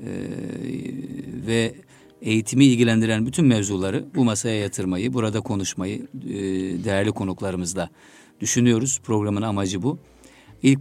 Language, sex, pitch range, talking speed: Turkish, male, 95-120 Hz, 105 wpm